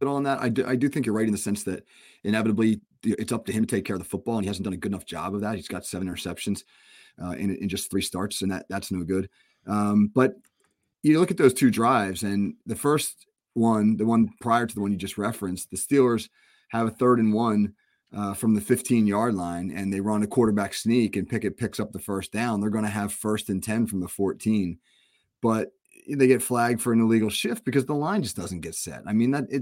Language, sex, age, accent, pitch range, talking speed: English, male, 30-49, American, 100-125 Hz, 255 wpm